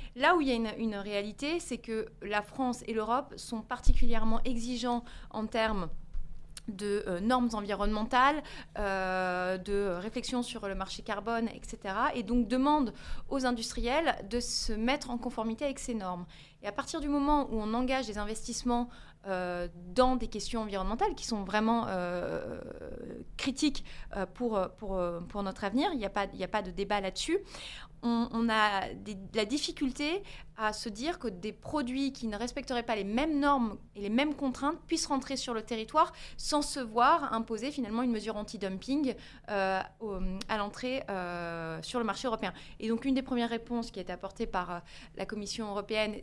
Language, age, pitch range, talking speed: French, 30-49, 200-255 Hz, 170 wpm